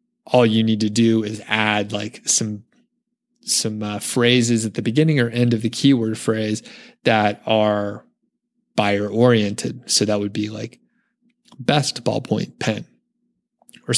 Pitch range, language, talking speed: 110-130 Hz, English, 140 wpm